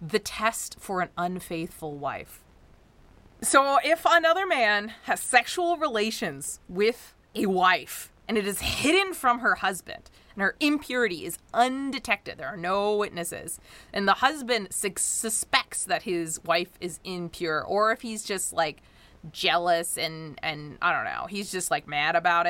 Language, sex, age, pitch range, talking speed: English, female, 20-39, 175-245 Hz, 155 wpm